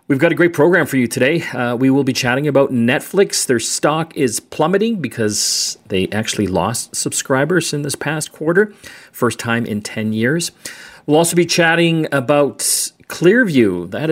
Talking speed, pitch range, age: 170 wpm, 115-150 Hz, 40-59